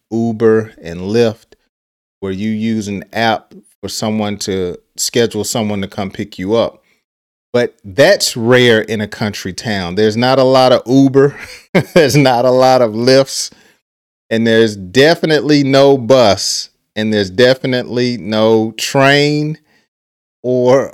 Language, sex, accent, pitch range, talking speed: English, male, American, 100-125 Hz, 140 wpm